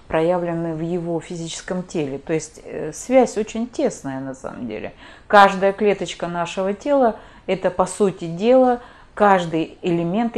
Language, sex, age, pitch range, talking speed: Russian, female, 30-49, 150-195 Hz, 135 wpm